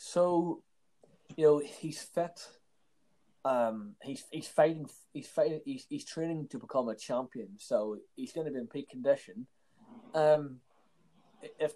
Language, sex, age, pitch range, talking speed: English, male, 20-39, 125-165 Hz, 145 wpm